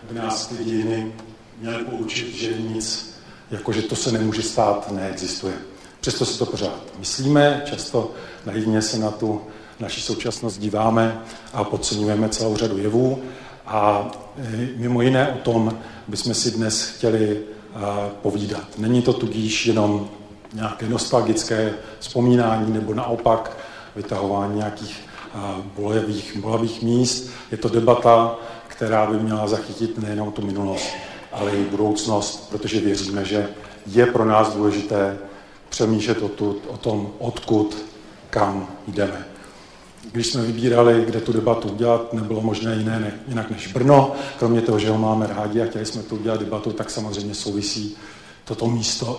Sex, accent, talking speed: male, native, 135 wpm